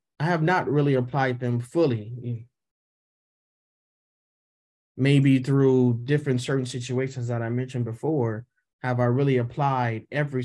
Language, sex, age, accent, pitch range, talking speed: English, male, 30-49, American, 115-135 Hz, 120 wpm